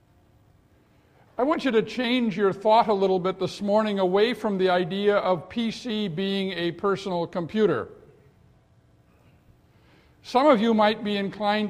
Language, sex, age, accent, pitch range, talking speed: English, male, 60-79, American, 185-225 Hz, 145 wpm